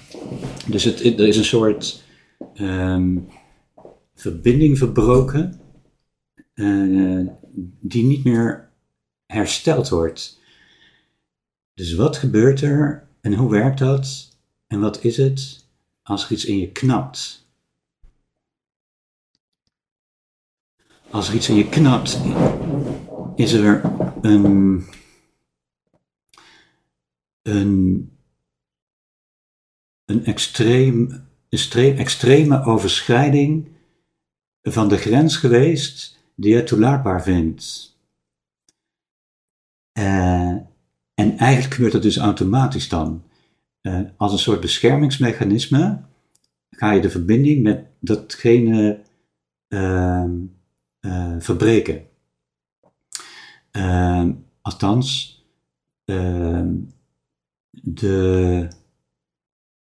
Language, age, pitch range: Dutch, 60-79, 85-125 Hz